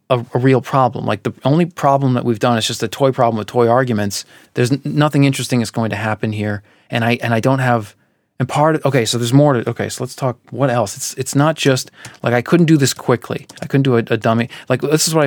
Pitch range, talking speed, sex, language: 110-135 Hz, 265 wpm, male, English